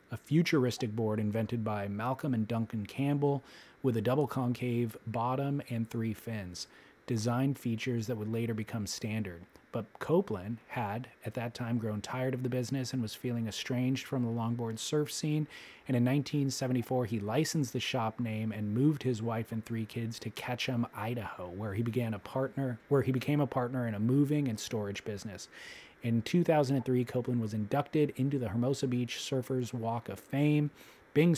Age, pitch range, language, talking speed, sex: 30-49, 115-130 Hz, English, 175 wpm, male